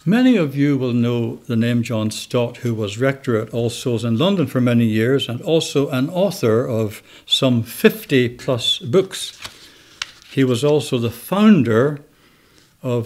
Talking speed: 155 wpm